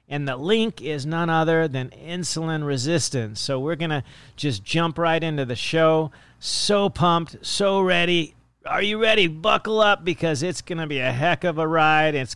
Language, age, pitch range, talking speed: English, 40-59, 120-155 Hz, 190 wpm